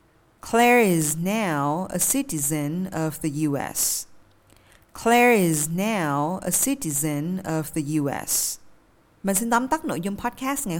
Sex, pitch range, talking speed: female, 165-220 Hz, 135 wpm